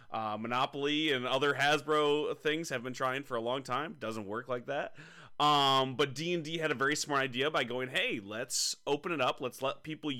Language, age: English, 30-49